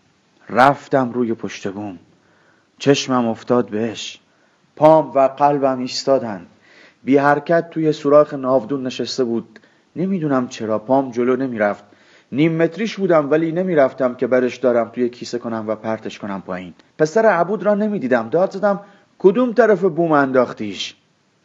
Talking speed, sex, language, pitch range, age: 130 wpm, male, Persian, 120-165 Hz, 30-49